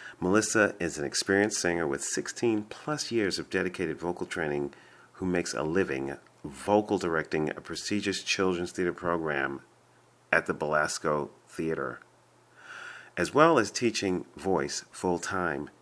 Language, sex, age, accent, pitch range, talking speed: English, male, 40-59, American, 80-105 Hz, 130 wpm